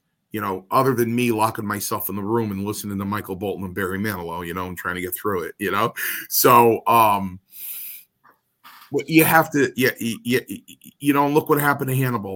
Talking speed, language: 210 wpm, English